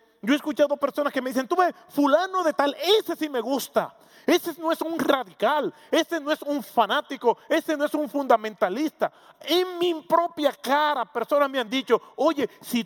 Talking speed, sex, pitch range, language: 190 wpm, male, 210-300 Hz, English